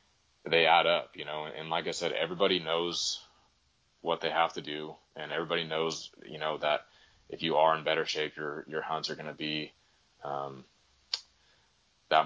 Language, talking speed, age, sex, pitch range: English, 180 wpm, 20-39, male, 75-80 Hz